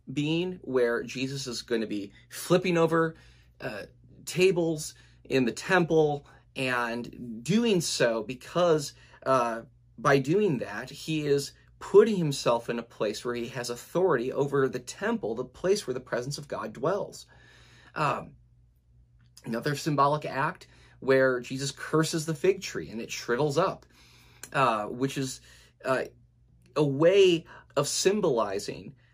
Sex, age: male, 30-49